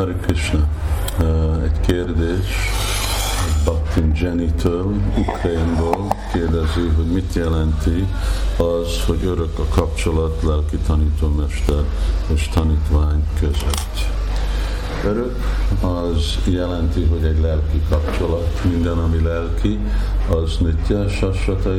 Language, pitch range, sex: Hungarian, 75-90 Hz, male